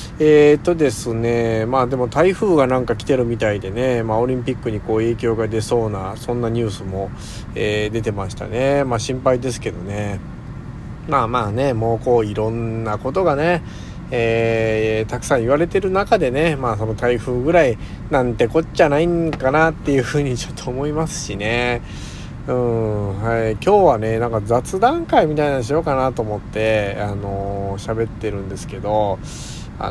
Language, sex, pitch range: Japanese, male, 105-140 Hz